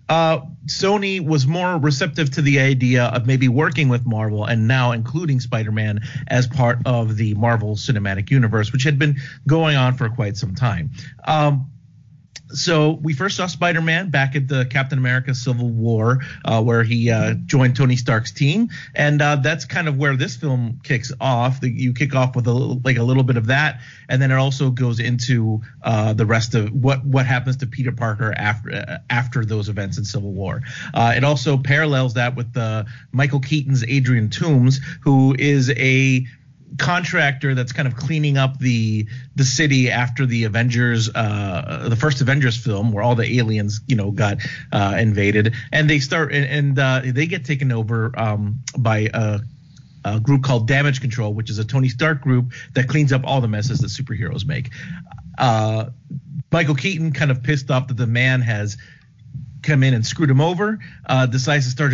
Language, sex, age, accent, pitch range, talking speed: English, male, 40-59, American, 120-145 Hz, 190 wpm